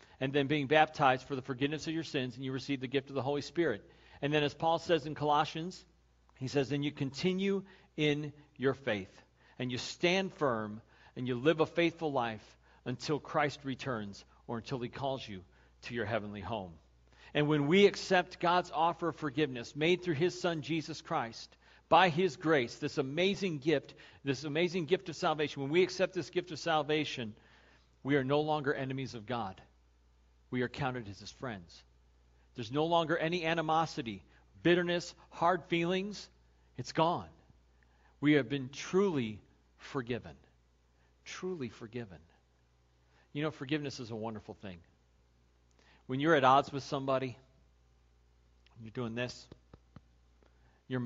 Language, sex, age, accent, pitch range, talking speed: English, male, 50-69, American, 95-155 Hz, 160 wpm